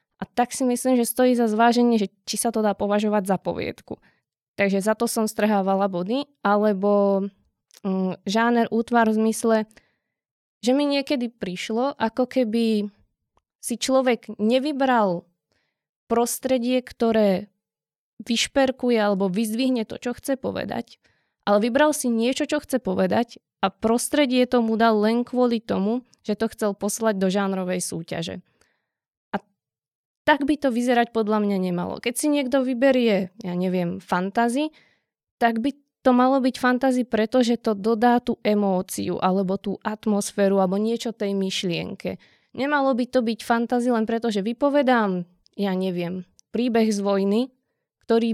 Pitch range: 200-245 Hz